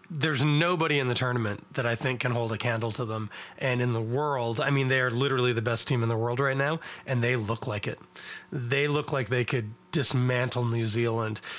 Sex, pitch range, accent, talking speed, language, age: male, 120-155 Hz, American, 230 wpm, English, 30-49